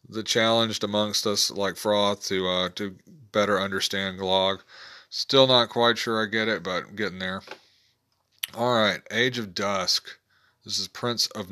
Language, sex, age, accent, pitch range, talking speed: English, male, 40-59, American, 95-125 Hz, 165 wpm